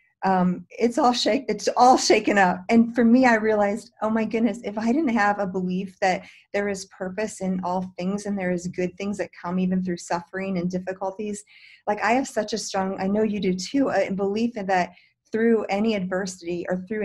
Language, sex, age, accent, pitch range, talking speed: English, female, 30-49, American, 185-220 Hz, 215 wpm